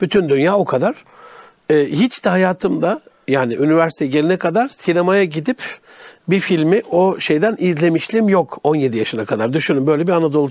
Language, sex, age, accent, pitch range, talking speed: Turkish, male, 60-79, native, 140-190 Hz, 155 wpm